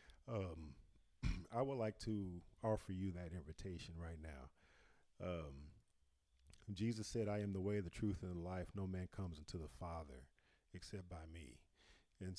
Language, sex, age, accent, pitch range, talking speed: English, male, 40-59, American, 80-100 Hz, 160 wpm